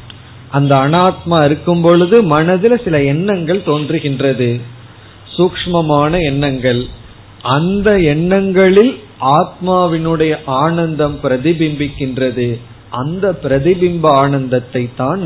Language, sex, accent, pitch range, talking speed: Tamil, male, native, 125-160 Hz, 75 wpm